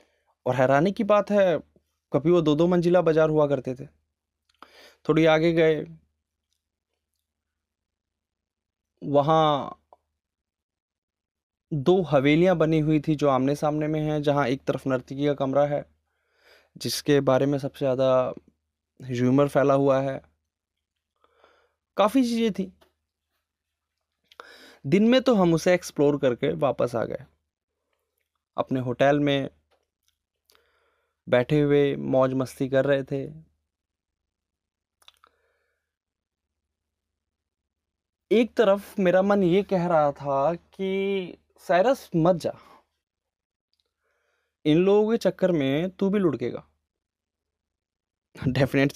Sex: male